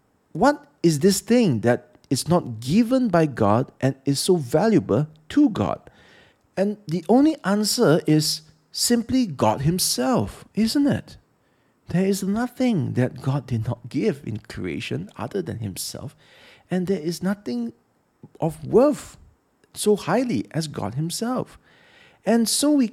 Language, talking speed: English, 140 wpm